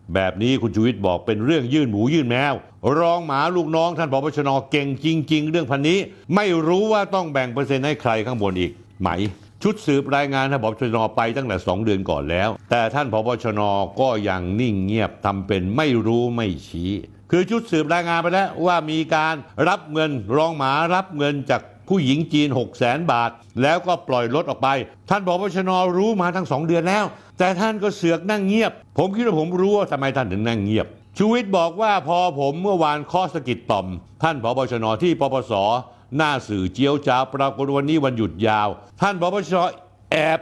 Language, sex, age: Thai, male, 60-79